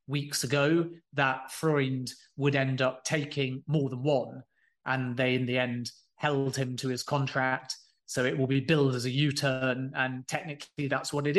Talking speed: 180 wpm